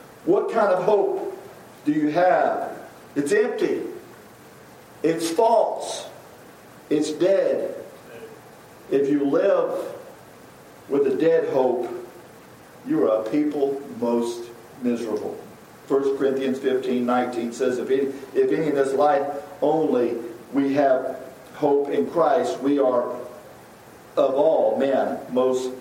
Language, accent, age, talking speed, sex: English, American, 50-69, 110 wpm, male